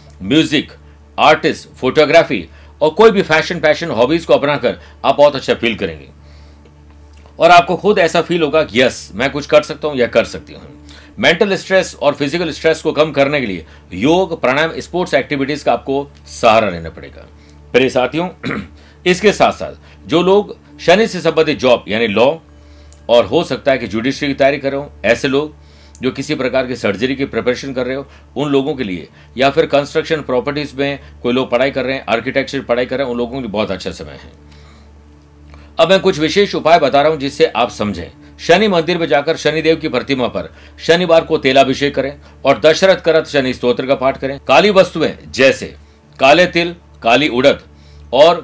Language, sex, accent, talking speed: Hindi, male, native, 150 wpm